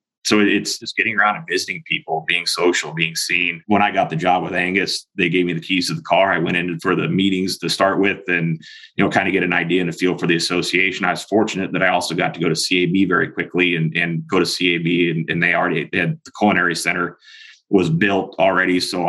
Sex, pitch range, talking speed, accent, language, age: male, 80-90 Hz, 260 wpm, American, English, 30-49